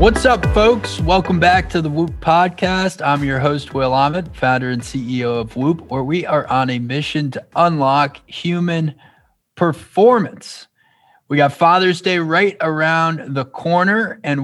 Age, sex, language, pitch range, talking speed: 20-39, male, English, 135-165 Hz, 160 wpm